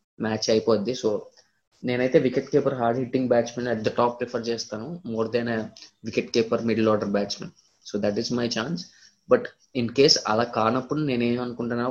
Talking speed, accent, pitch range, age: 155 wpm, native, 110-125 Hz, 20-39